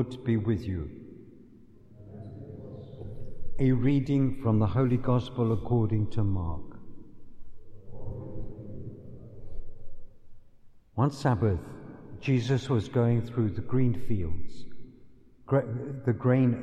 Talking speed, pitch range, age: 85 wpm, 105-125 Hz, 60-79